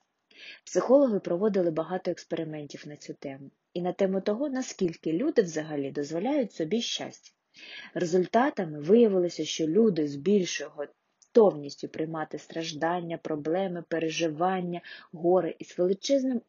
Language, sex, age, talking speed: Ukrainian, female, 20-39, 115 wpm